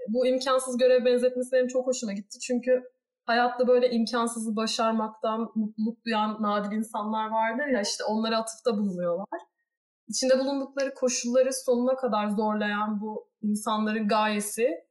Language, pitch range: Turkish, 220-270 Hz